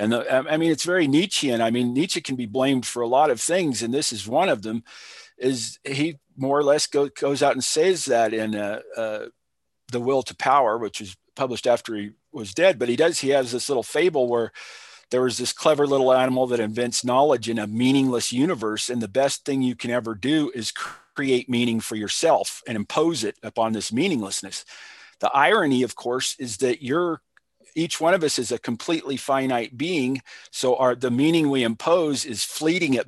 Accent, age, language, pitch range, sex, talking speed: American, 50-69, English, 115-145 Hz, male, 205 wpm